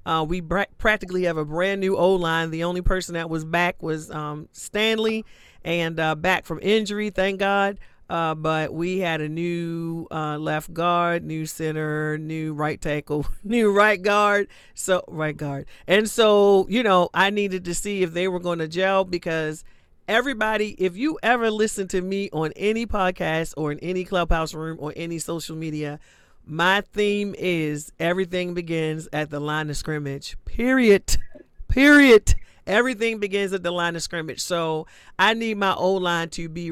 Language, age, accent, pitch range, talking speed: English, 40-59, American, 160-200 Hz, 175 wpm